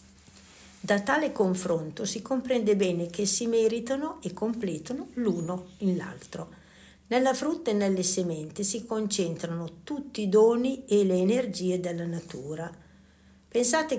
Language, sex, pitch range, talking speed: Italian, female, 170-225 Hz, 130 wpm